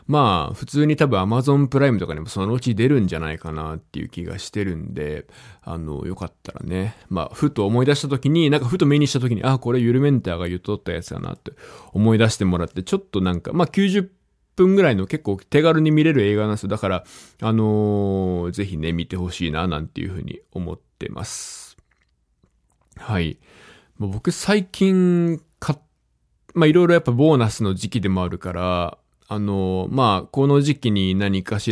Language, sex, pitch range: Japanese, male, 95-145 Hz